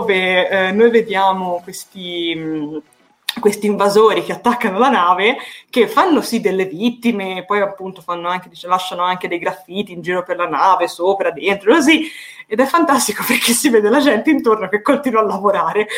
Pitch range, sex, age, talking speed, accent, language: 175-220 Hz, female, 20-39, 160 wpm, native, Italian